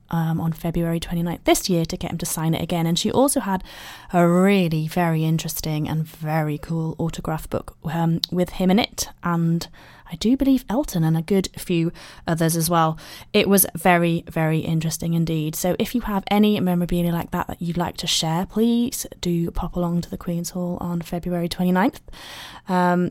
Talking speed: 190 wpm